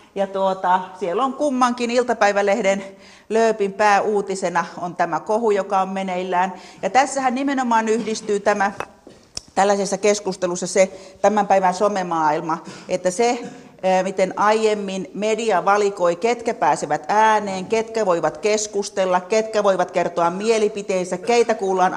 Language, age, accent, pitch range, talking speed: Finnish, 40-59, native, 180-220 Hz, 115 wpm